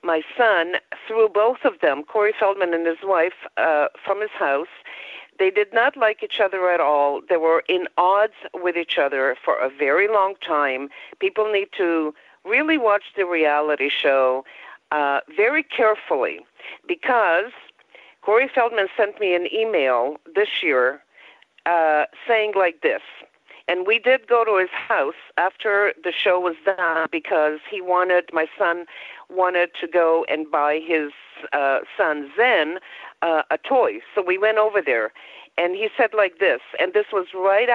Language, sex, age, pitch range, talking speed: English, female, 50-69, 170-240 Hz, 160 wpm